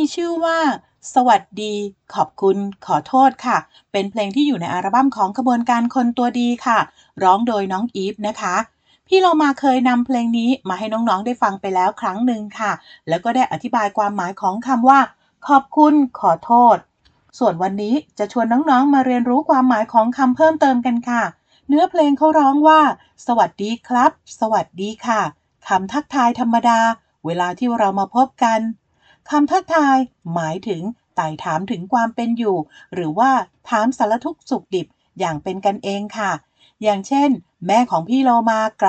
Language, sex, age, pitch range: Thai, female, 30-49, 200-265 Hz